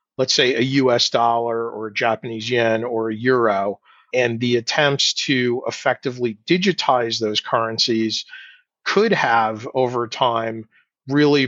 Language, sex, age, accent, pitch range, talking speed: English, male, 40-59, American, 115-135 Hz, 130 wpm